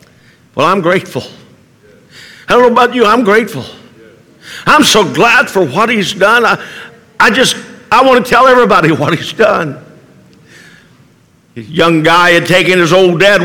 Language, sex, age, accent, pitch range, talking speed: English, male, 60-79, American, 170-225 Hz, 160 wpm